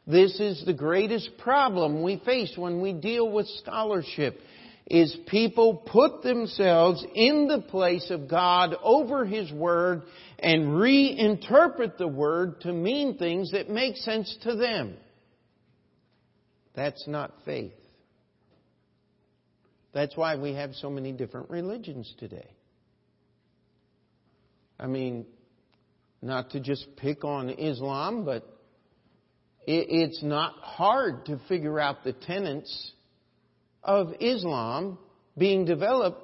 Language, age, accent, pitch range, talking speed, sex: English, 50-69, American, 150-200 Hz, 115 wpm, male